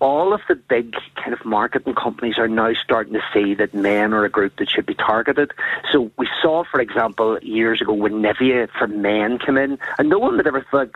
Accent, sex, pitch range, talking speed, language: Irish, male, 110-135 Hz, 225 wpm, English